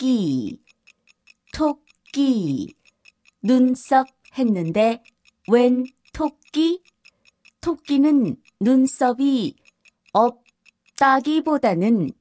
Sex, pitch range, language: female, 230-275 Hz, Korean